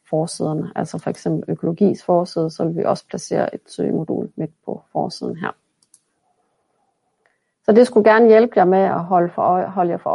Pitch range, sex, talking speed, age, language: 180-220 Hz, female, 185 wpm, 30-49, Danish